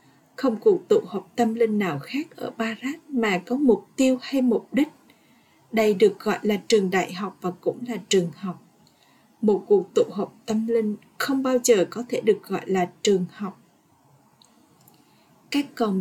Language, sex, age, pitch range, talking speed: Vietnamese, female, 20-39, 200-255 Hz, 175 wpm